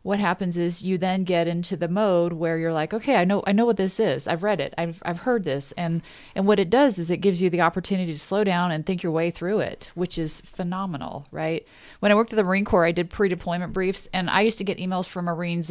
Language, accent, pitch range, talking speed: English, American, 160-195 Hz, 270 wpm